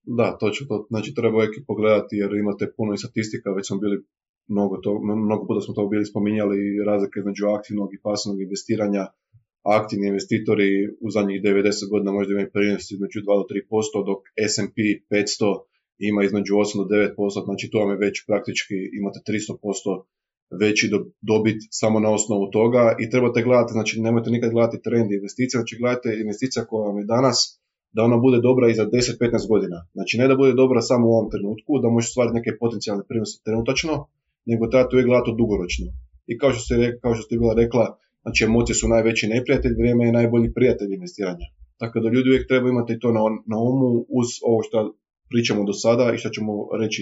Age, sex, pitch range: 20-39, male, 105-120 Hz